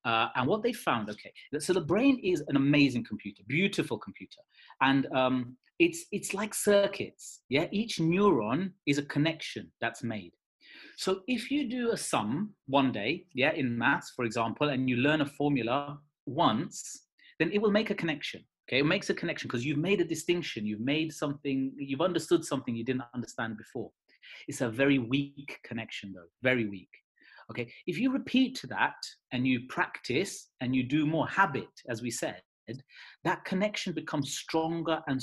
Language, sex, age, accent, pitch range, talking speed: English, male, 30-49, British, 130-190 Hz, 175 wpm